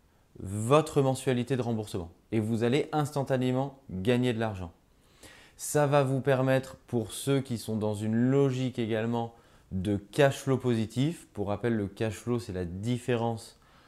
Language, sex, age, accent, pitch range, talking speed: French, male, 20-39, French, 100-125 Hz, 150 wpm